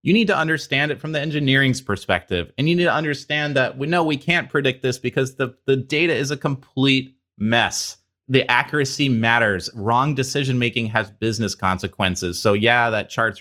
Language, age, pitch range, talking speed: English, 30-49, 100-135 Hz, 185 wpm